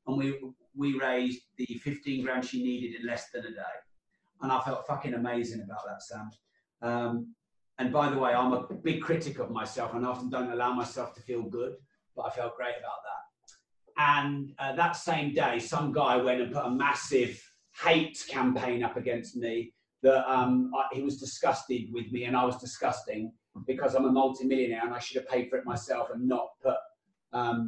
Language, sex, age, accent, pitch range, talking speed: English, male, 30-49, British, 125-160 Hz, 195 wpm